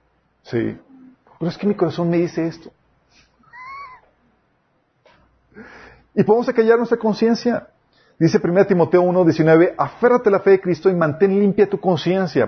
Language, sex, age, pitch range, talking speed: Spanish, male, 40-59, 130-185 Hz, 145 wpm